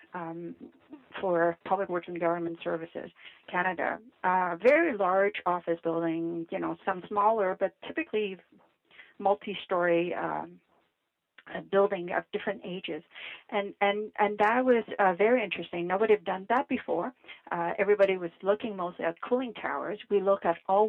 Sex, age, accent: female, 50-69, American